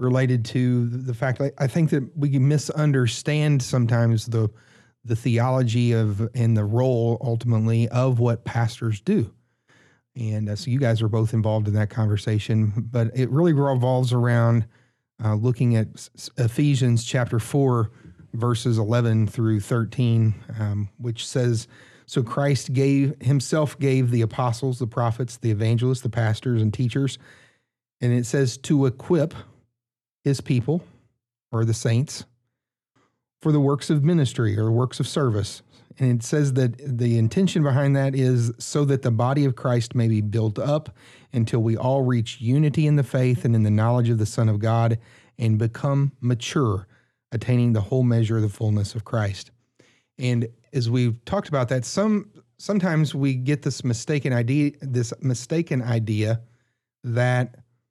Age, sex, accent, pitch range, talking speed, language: 30-49, male, American, 115-135 Hz, 160 wpm, English